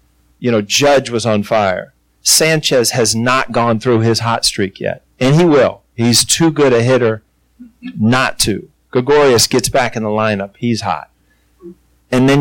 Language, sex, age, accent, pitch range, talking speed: English, male, 40-59, American, 110-135 Hz, 170 wpm